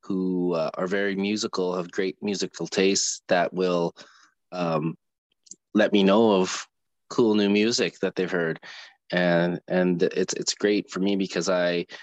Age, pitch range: 20-39, 90-100 Hz